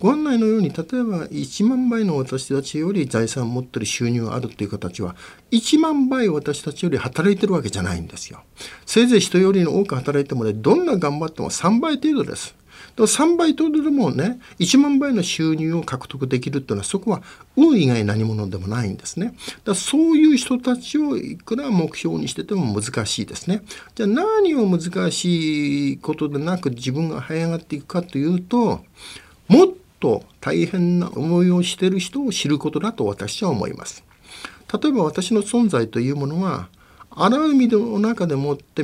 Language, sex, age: Japanese, male, 50-69